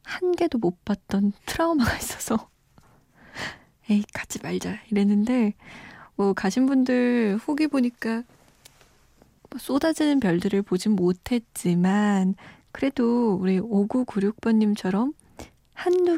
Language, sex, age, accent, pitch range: Korean, female, 20-39, native, 200-255 Hz